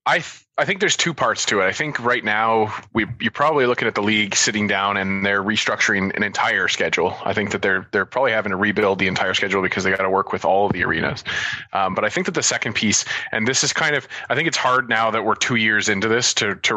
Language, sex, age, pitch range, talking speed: English, male, 20-39, 105-120 Hz, 270 wpm